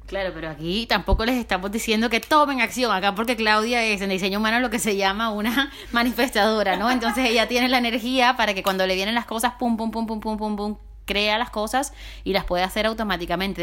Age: 20-39